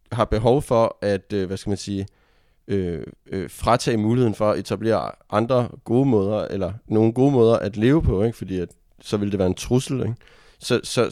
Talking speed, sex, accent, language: 195 wpm, male, native, Danish